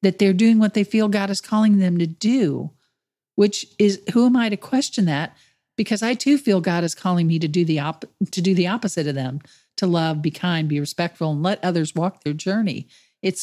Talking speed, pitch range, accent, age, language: 230 wpm, 160-210 Hz, American, 50-69, English